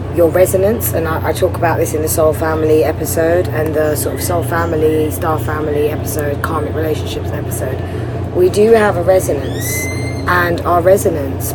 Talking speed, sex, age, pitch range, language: 170 wpm, female, 20-39, 100-150 Hz, English